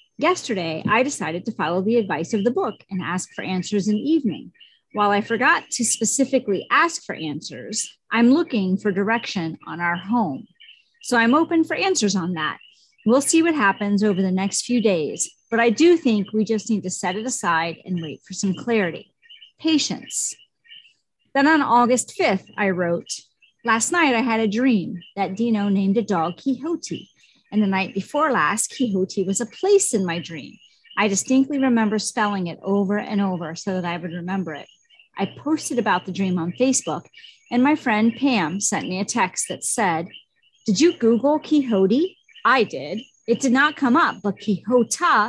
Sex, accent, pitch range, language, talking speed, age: female, American, 195-260 Hz, English, 185 wpm, 40-59